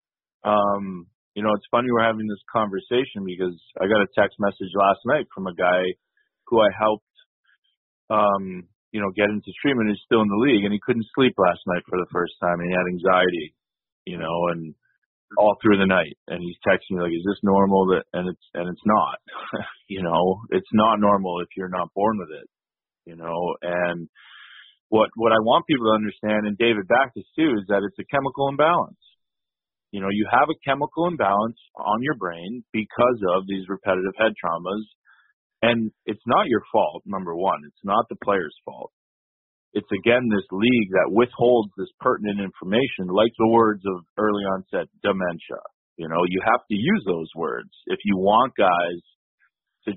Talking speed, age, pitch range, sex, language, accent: 190 wpm, 30-49, 90-110 Hz, male, English, American